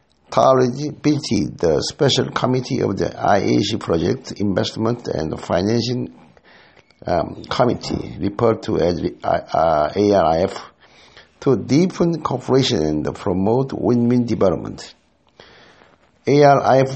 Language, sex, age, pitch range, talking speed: English, male, 60-79, 115-140 Hz, 90 wpm